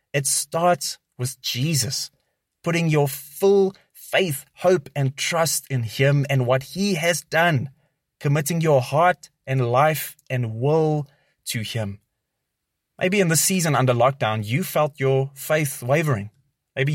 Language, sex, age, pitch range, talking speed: English, male, 20-39, 130-160 Hz, 140 wpm